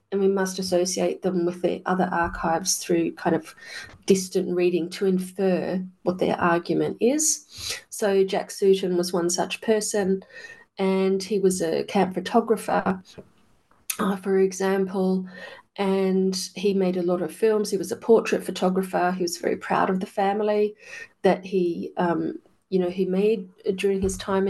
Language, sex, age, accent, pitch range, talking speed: English, female, 30-49, Australian, 185-205 Hz, 160 wpm